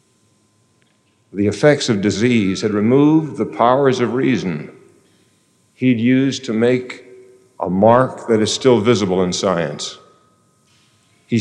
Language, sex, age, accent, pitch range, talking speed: English, male, 50-69, American, 105-125 Hz, 125 wpm